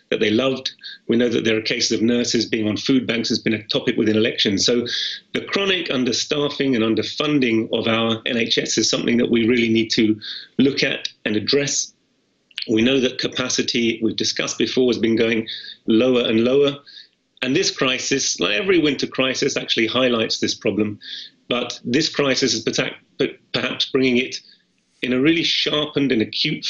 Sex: male